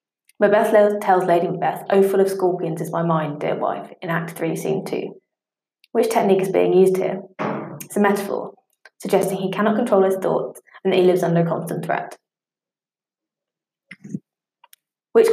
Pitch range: 175-205 Hz